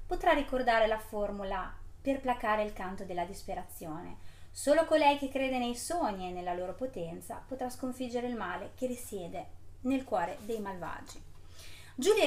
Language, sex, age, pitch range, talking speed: Italian, female, 30-49, 195-250 Hz, 150 wpm